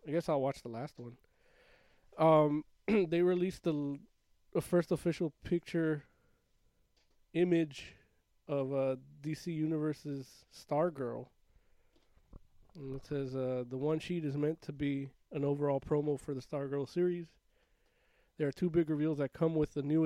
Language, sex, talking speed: English, male, 145 wpm